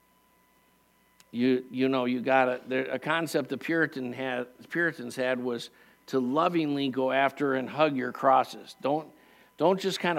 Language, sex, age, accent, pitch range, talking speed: English, male, 50-69, American, 130-165 Hz, 155 wpm